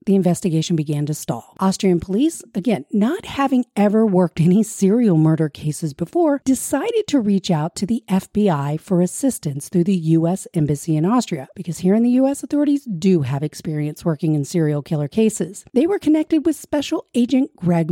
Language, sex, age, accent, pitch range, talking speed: English, female, 40-59, American, 165-240 Hz, 180 wpm